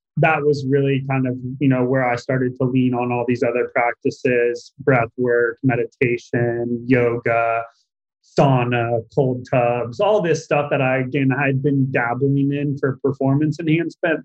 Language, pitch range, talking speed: English, 125-140 Hz, 155 wpm